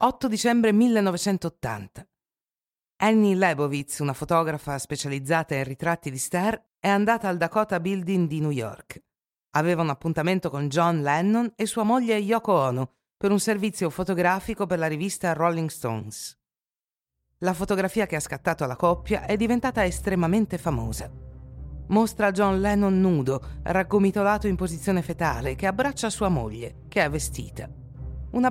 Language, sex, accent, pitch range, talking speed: Italian, female, native, 145-205 Hz, 140 wpm